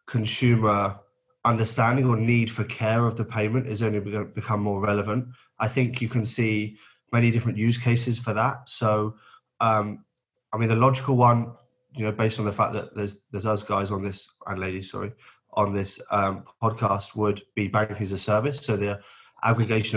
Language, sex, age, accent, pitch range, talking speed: English, male, 20-39, British, 105-115 Hz, 190 wpm